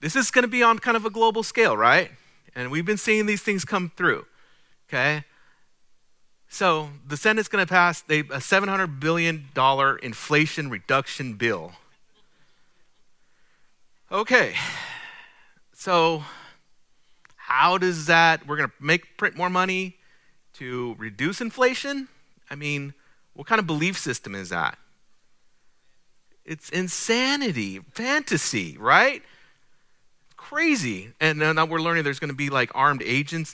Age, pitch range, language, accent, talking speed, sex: 40-59, 130-185 Hz, English, American, 125 wpm, male